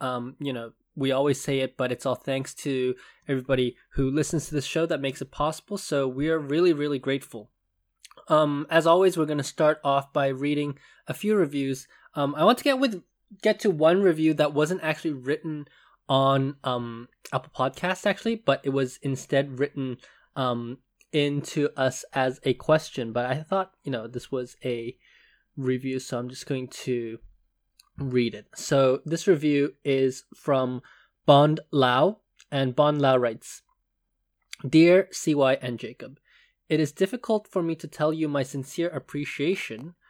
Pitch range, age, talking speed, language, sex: 130-160 Hz, 20-39, 170 wpm, English, male